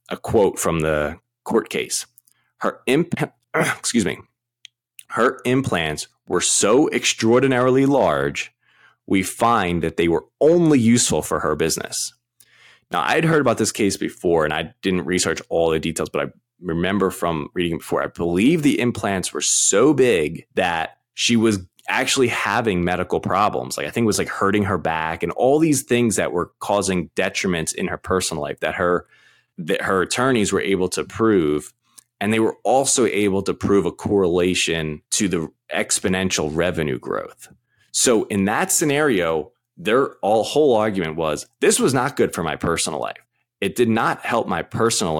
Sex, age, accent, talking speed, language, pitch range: male, 20-39, American, 165 wpm, English, 85-120 Hz